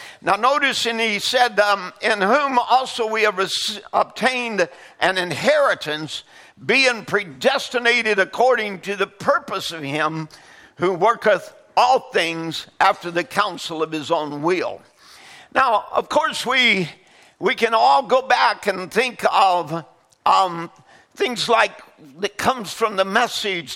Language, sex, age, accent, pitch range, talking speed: English, male, 50-69, American, 185-245 Hz, 135 wpm